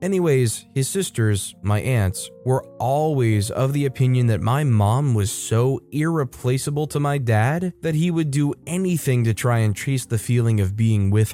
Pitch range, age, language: 110-145 Hz, 20-39, English